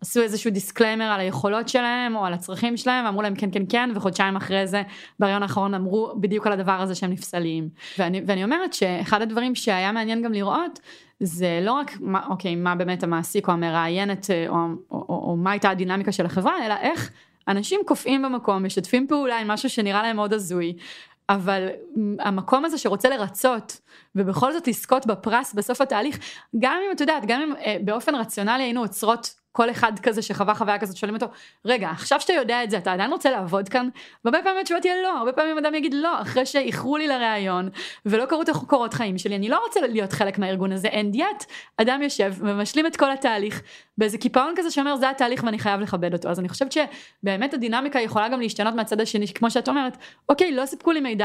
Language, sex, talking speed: Hebrew, female, 190 wpm